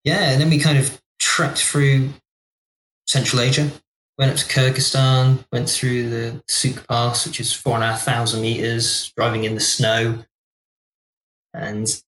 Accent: British